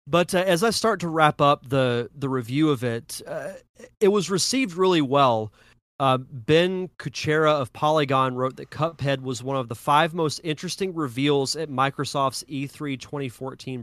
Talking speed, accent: 170 wpm, American